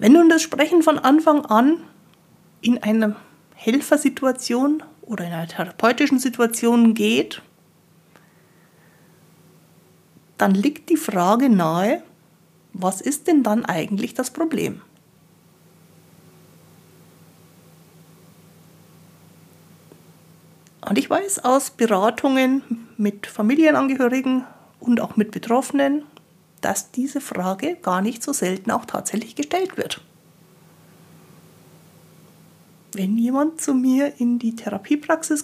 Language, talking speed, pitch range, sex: German, 95 wpm, 175-260 Hz, female